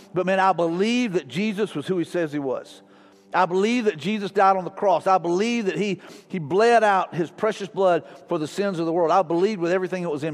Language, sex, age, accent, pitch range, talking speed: English, male, 50-69, American, 170-210 Hz, 250 wpm